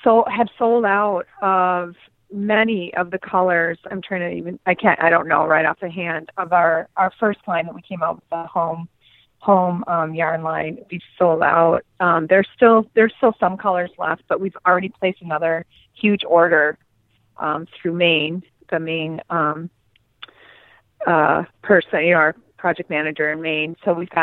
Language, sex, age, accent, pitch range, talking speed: English, female, 30-49, American, 160-200 Hz, 180 wpm